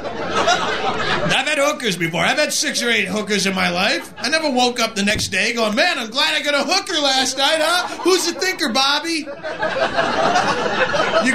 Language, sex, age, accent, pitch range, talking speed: English, male, 30-49, American, 210-290 Hz, 190 wpm